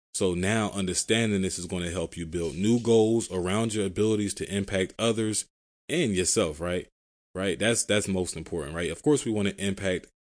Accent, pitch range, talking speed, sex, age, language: American, 90-110 Hz, 190 wpm, male, 20-39, English